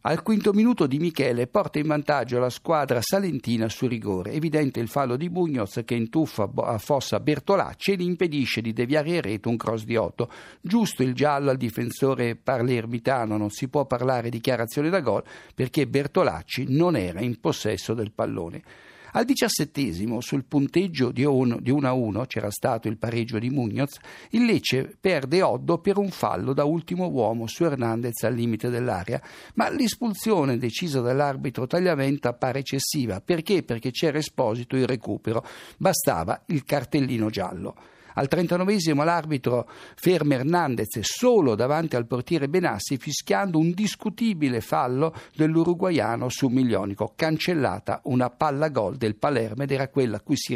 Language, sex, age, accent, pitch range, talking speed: Italian, male, 60-79, native, 120-155 Hz, 155 wpm